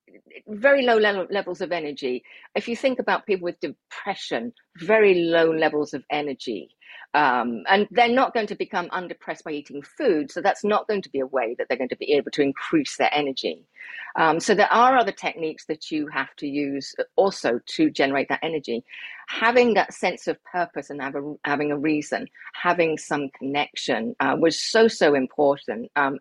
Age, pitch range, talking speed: 40-59, 155-230 Hz, 185 wpm